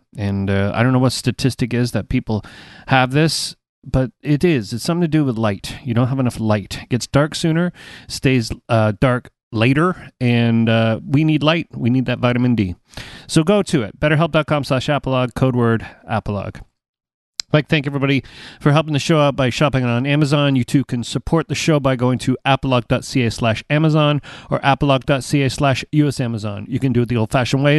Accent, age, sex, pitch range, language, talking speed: American, 40-59, male, 115-150 Hz, English, 190 wpm